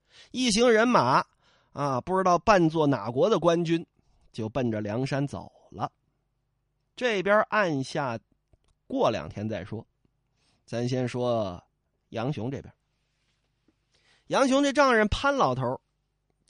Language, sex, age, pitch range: Chinese, male, 20-39, 120-165 Hz